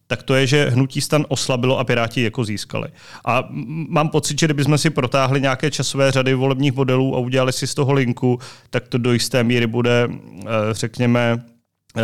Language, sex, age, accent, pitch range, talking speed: Czech, male, 30-49, native, 120-145 Hz, 180 wpm